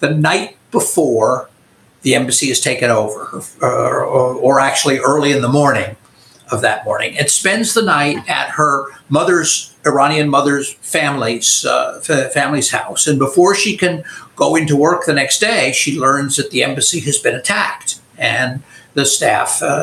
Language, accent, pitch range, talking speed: English, American, 135-170 Hz, 160 wpm